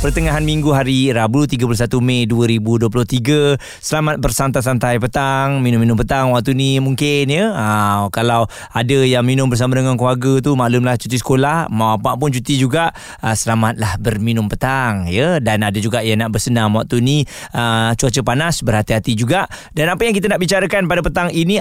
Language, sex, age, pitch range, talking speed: Malay, male, 20-39, 120-155 Hz, 165 wpm